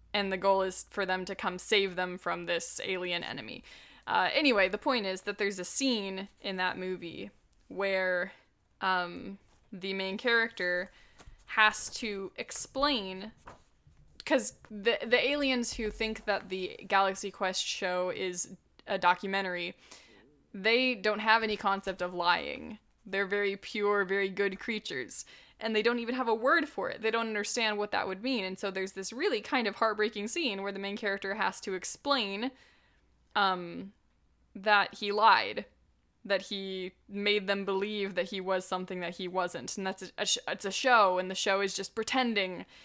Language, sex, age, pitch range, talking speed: English, female, 10-29, 190-230 Hz, 165 wpm